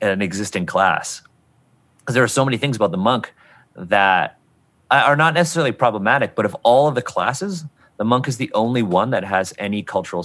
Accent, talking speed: American, 195 wpm